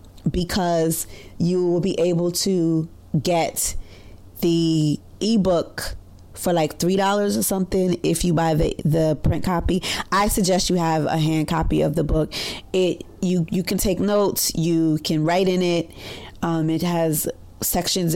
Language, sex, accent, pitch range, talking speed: English, female, American, 155-180 Hz, 155 wpm